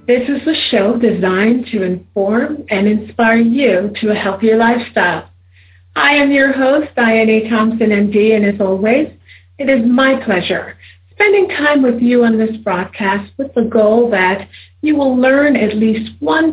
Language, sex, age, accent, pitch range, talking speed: English, female, 50-69, American, 190-255 Hz, 165 wpm